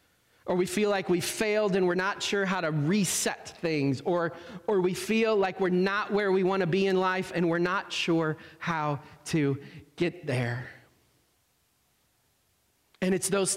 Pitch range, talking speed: 165-200 Hz, 170 wpm